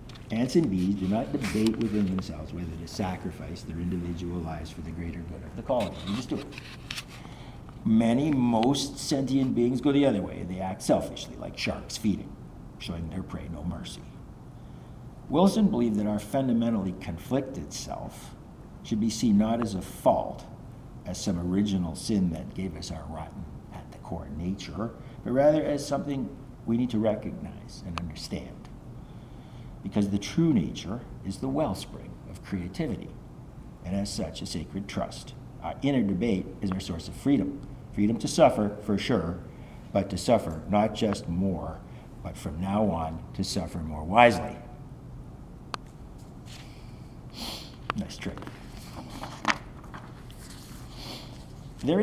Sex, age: male, 50-69